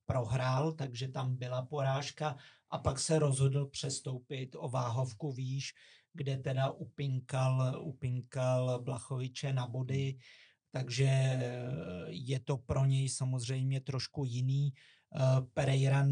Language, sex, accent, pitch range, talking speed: Czech, male, native, 125-140 Hz, 100 wpm